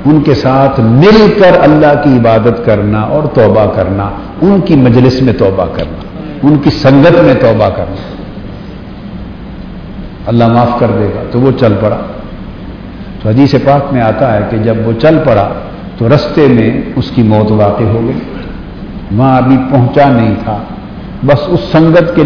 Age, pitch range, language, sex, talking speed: 60-79, 110-140 Hz, Urdu, male, 165 wpm